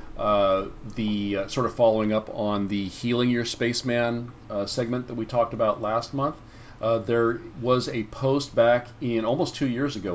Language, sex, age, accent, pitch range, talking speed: English, male, 40-59, American, 100-120 Hz, 185 wpm